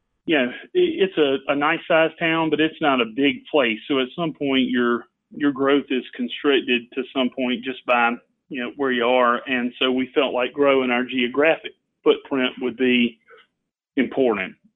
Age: 40-59